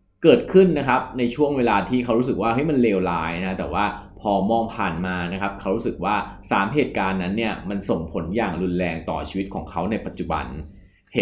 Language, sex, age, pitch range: Thai, male, 20-39, 90-115 Hz